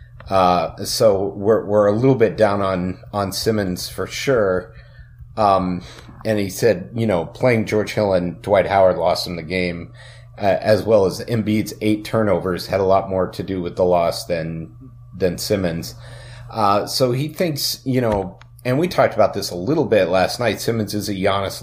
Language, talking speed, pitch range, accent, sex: English, 190 wpm, 95-115 Hz, American, male